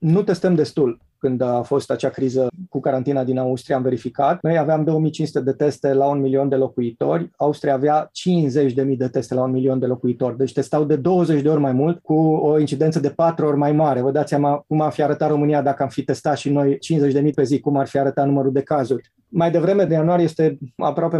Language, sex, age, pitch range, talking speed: Romanian, male, 30-49, 140-175 Hz, 225 wpm